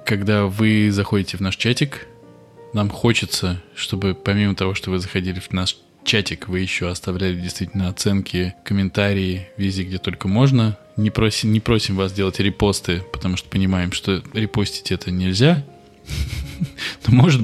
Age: 20-39